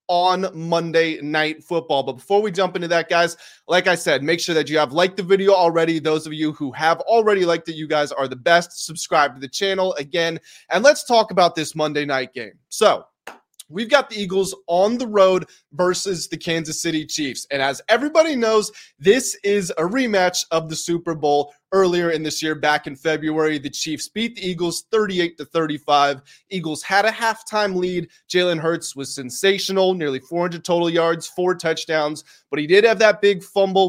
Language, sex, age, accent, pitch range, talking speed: English, male, 20-39, American, 155-190 Hz, 195 wpm